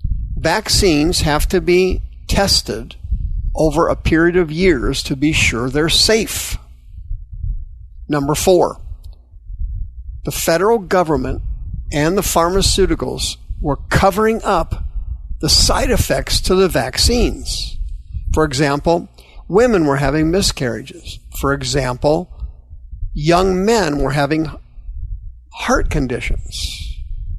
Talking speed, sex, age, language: 100 wpm, male, 50-69, English